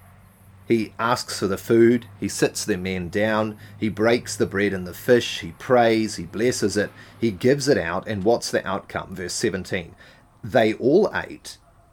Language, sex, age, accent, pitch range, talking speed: English, male, 30-49, Australian, 105-135 Hz, 175 wpm